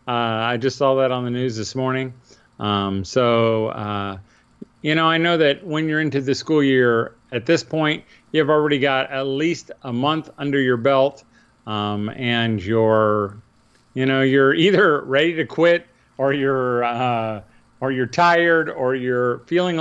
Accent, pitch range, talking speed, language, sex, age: American, 115-155 Hz, 170 wpm, English, male, 40-59